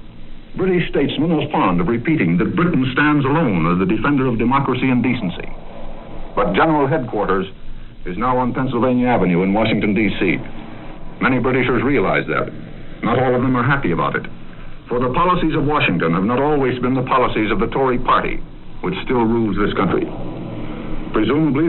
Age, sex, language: 60-79, male, English